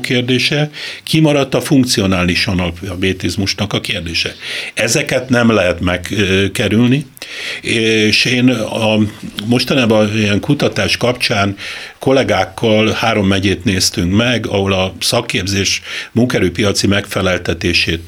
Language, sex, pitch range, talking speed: Hungarian, male, 95-120 Hz, 95 wpm